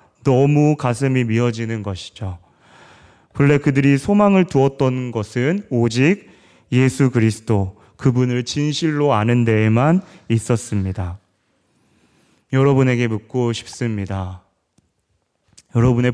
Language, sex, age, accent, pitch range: Korean, male, 30-49, native, 110-135 Hz